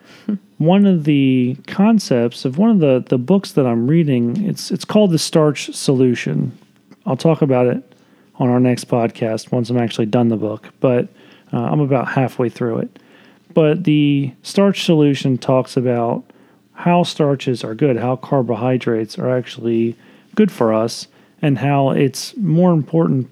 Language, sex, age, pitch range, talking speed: English, male, 40-59, 125-155 Hz, 160 wpm